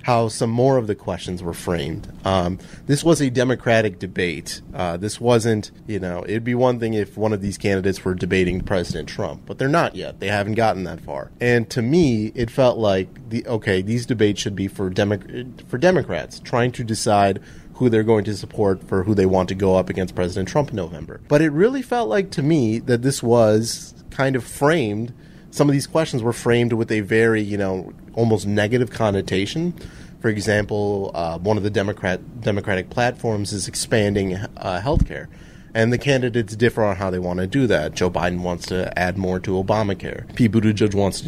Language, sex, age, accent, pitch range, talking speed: English, male, 30-49, American, 100-125 Hz, 205 wpm